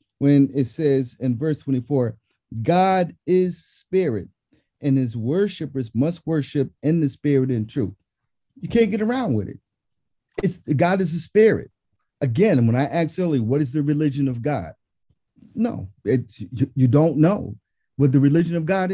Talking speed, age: 165 wpm, 50-69